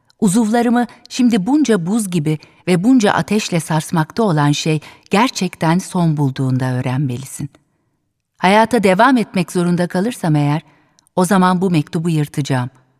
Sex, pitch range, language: female, 145-190 Hz, Turkish